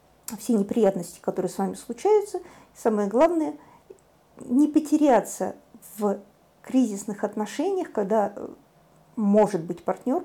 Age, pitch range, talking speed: 50-69, 200-255 Hz, 105 wpm